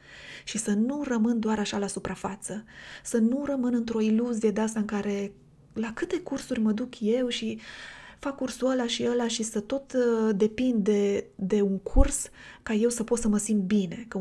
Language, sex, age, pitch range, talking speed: Romanian, female, 20-39, 205-235 Hz, 195 wpm